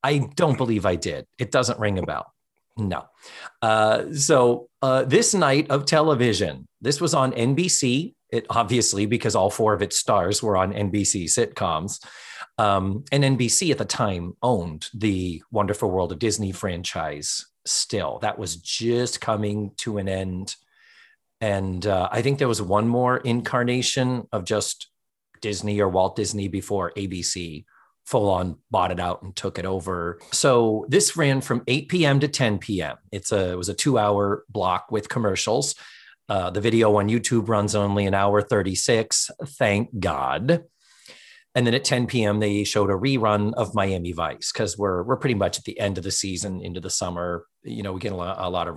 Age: 30-49